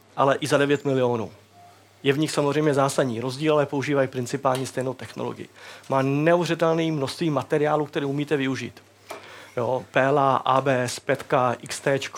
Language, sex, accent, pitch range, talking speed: Czech, male, native, 125-145 Hz, 140 wpm